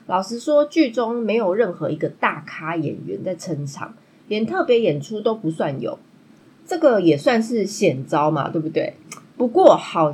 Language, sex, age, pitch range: Chinese, female, 20-39, 160-250 Hz